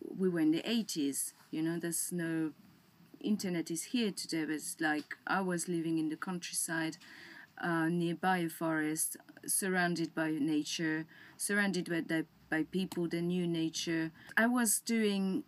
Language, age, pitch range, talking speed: English, 30-49, 165-195 Hz, 150 wpm